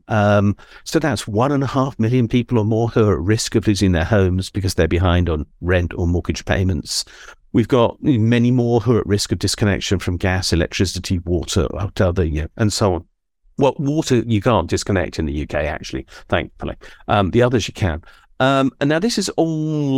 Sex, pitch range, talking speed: male, 90-125 Hz, 200 wpm